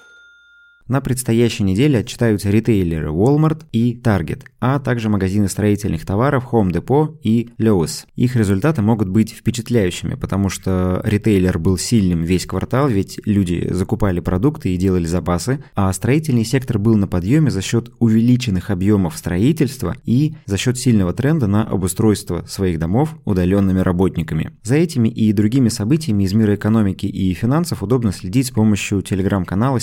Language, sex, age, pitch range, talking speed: Russian, male, 20-39, 95-125 Hz, 145 wpm